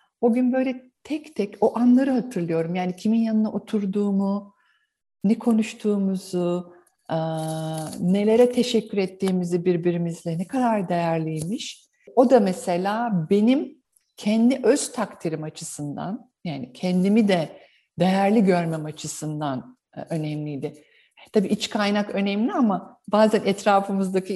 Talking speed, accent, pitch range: 105 wpm, native, 175-245 Hz